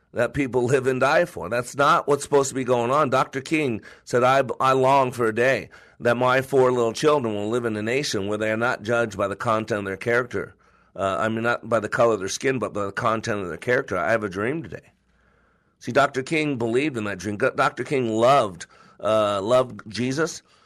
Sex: male